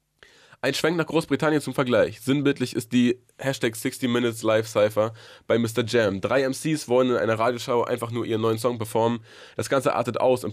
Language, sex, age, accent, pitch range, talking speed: German, male, 20-39, German, 110-125 Hz, 190 wpm